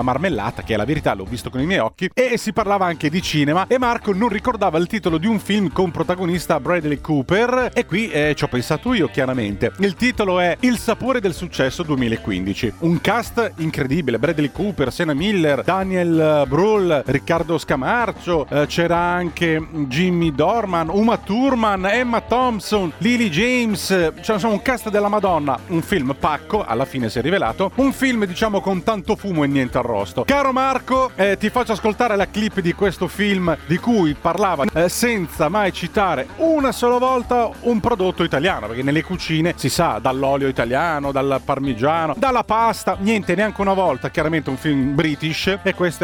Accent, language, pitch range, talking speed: native, Italian, 150-215 Hz, 175 wpm